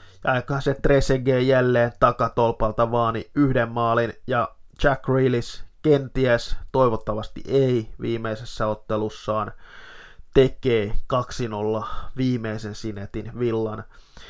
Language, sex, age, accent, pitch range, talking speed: Finnish, male, 20-39, native, 110-125 Hz, 90 wpm